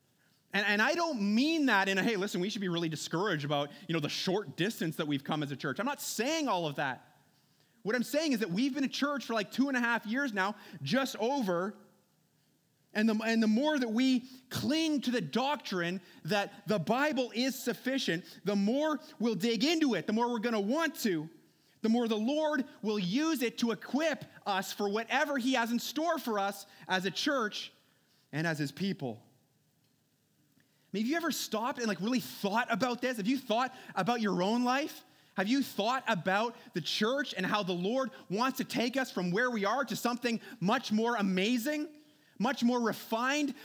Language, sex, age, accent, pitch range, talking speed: English, male, 30-49, American, 190-260 Hz, 205 wpm